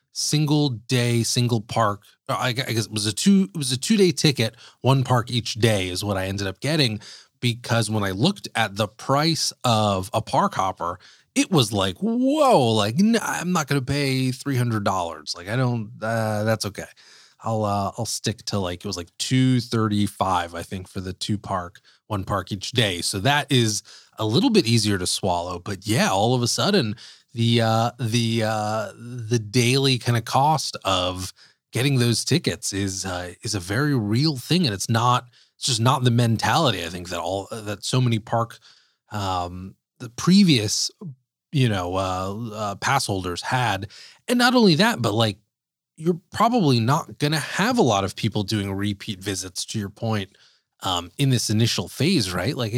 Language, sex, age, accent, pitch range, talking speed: English, male, 30-49, American, 105-135 Hz, 190 wpm